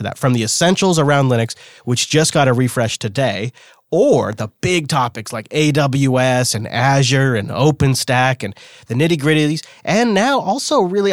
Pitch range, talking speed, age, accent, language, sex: 120-150 Hz, 160 wpm, 30-49, American, English, male